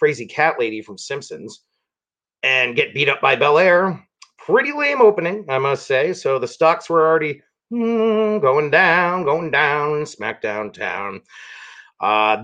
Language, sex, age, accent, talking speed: English, male, 40-59, American, 145 wpm